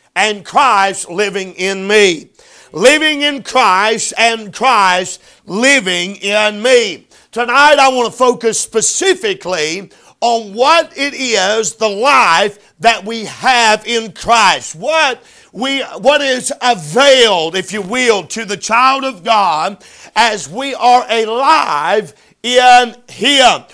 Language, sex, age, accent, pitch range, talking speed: English, male, 50-69, American, 210-265 Hz, 120 wpm